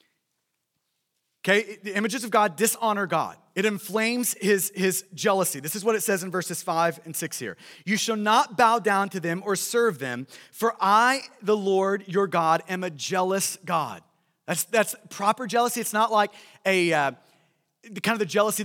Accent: American